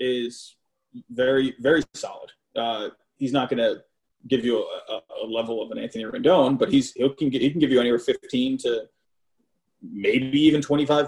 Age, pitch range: 30-49, 135-170 Hz